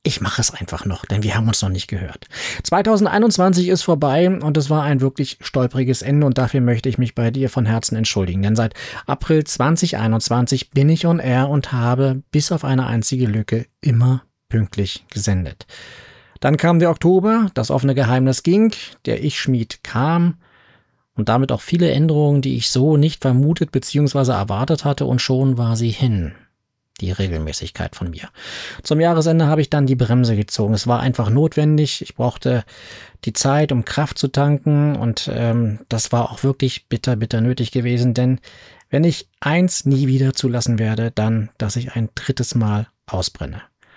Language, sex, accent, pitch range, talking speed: German, male, German, 115-150 Hz, 175 wpm